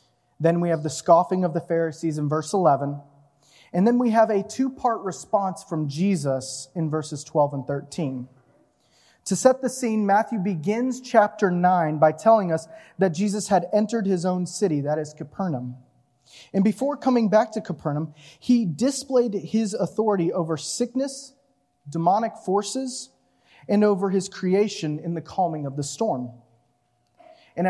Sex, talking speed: male, 155 wpm